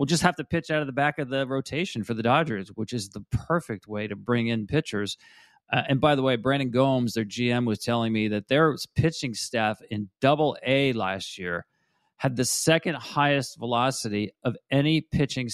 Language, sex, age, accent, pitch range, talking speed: English, male, 40-59, American, 115-145 Hz, 205 wpm